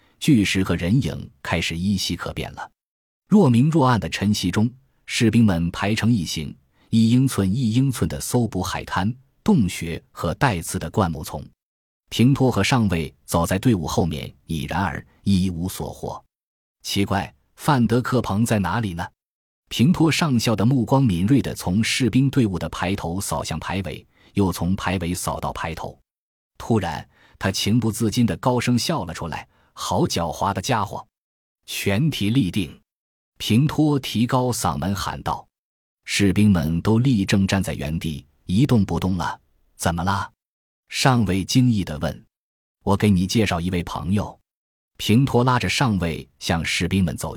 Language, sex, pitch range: Chinese, male, 85-120 Hz